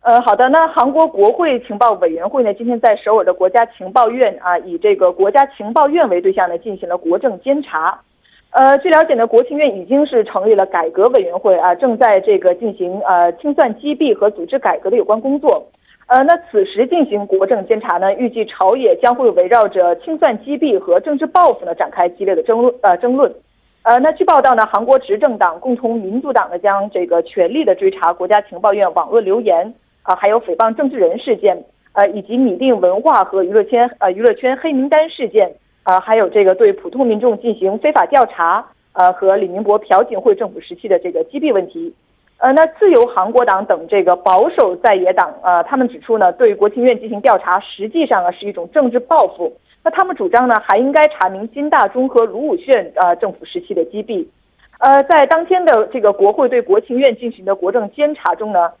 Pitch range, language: 195-300 Hz, Korean